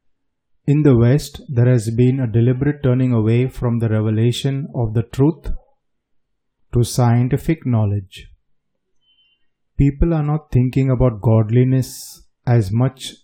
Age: 30-49